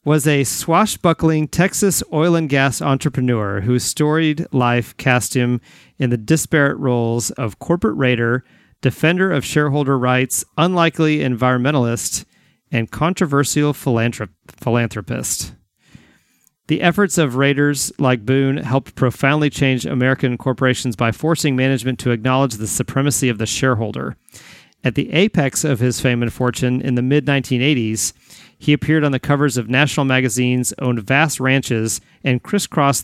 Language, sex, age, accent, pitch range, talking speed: English, male, 40-59, American, 125-150 Hz, 135 wpm